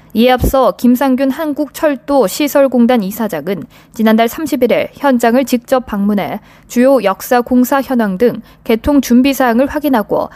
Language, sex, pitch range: Korean, female, 210-270 Hz